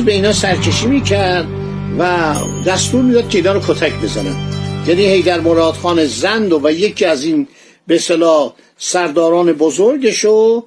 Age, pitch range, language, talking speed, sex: 50-69, 165-225 Hz, Persian, 135 wpm, male